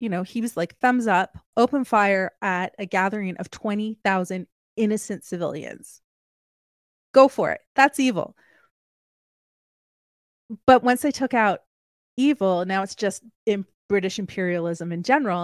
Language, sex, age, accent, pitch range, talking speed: English, female, 30-49, American, 185-240 Hz, 135 wpm